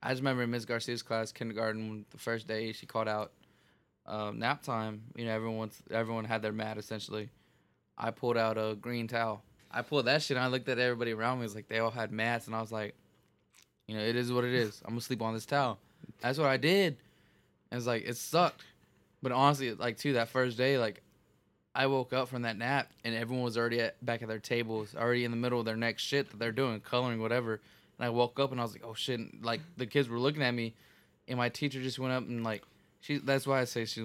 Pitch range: 110-125 Hz